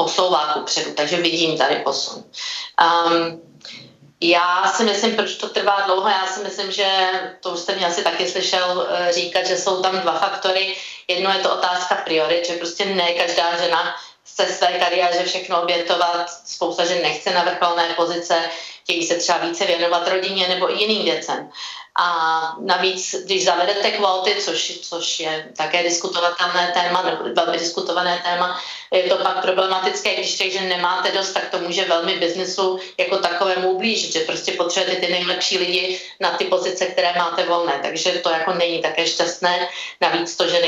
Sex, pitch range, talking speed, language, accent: female, 170-190 Hz, 175 wpm, Czech, native